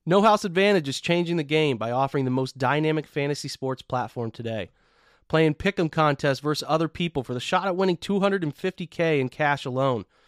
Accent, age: American, 30-49